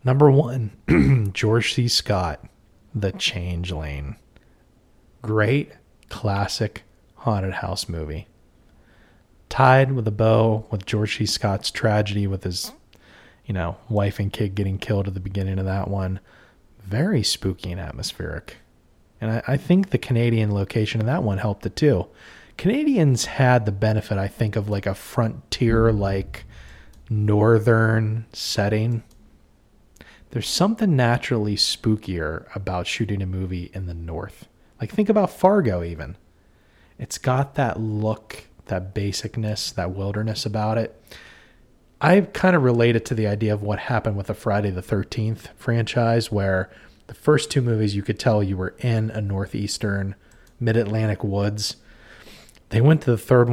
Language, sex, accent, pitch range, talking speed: English, male, American, 95-115 Hz, 140 wpm